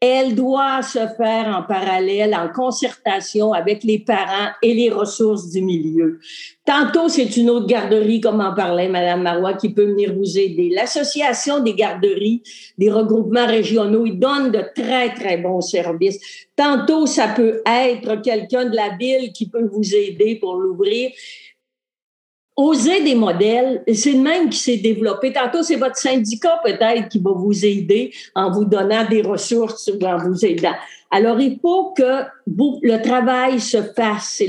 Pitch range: 210-260 Hz